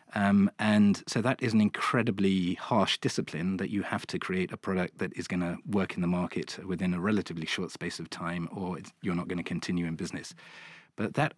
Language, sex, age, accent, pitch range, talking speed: English, male, 40-59, British, 90-110 Hz, 215 wpm